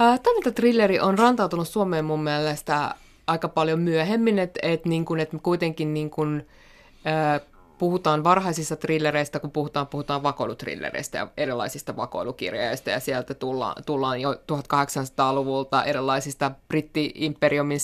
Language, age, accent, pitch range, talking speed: Finnish, 20-39, native, 140-175 Hz, 120 wpm